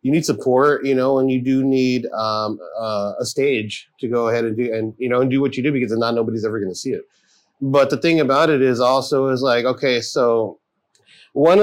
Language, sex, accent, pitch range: English, male, American, 115-140 Hz